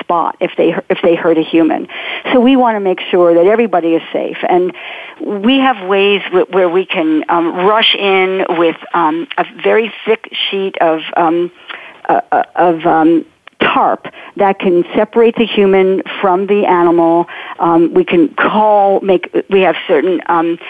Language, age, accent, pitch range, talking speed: English, 50-69, American, 185-245 Hz, 170 wpm